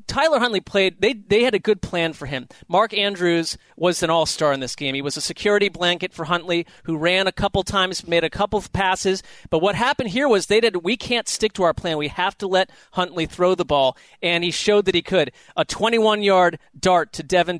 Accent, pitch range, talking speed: American, 165-205 Hz, 230 wpm